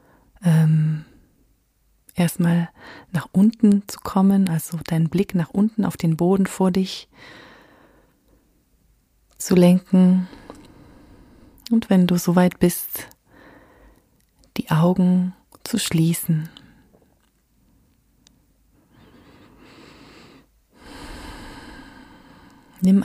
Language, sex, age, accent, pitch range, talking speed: German, female, 30-49, German, 165-190 Hz, 70 wpm